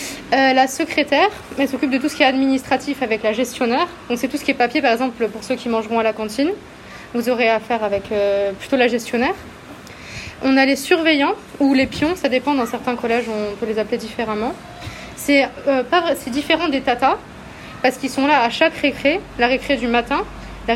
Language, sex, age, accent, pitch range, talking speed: French, female, 20-39, French, 235-280 Hz, 210 wpm